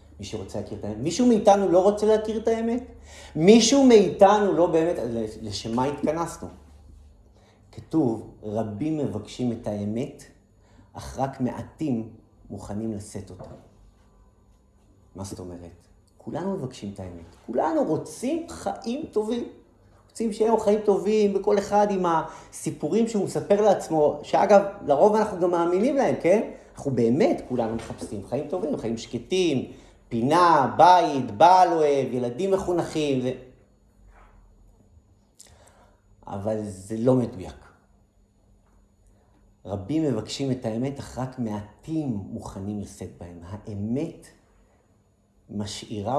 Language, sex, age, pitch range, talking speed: Hebrew, male, 30-49, 100-160 Hz, 115 wpm